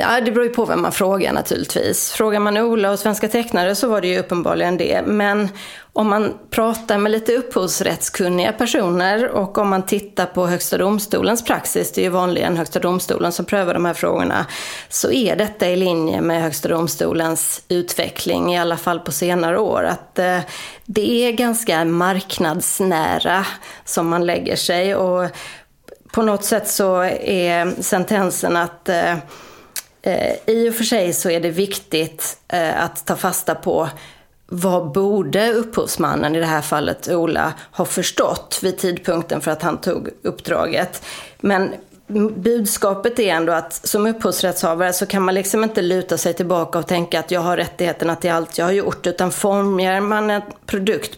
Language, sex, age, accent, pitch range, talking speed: Swedish, female, 30-49, native, 175-210 Hz, 165 wpm